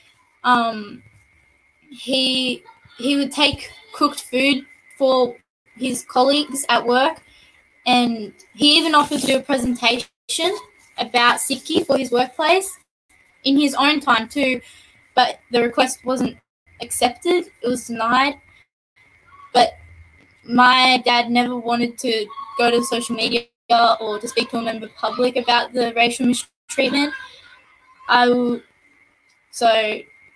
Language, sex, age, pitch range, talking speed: Punjabi, female, 10-29, 240-275 Hz, 125 wpm